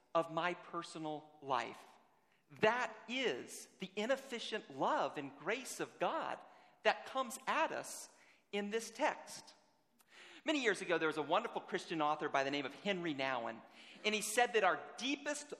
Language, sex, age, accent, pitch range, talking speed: English, male, 40-59, American, 165-245 Hz, 160 wpm